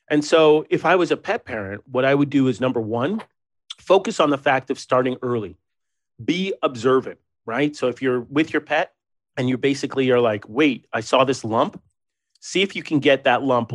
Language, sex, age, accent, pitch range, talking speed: English, male, 40-59, American, 125-150 Hz, 210 wpm